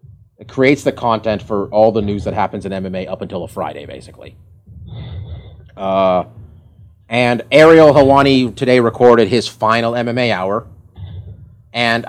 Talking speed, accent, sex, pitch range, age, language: 140 wpm, American, male, 105-130 Hz, 30-49, English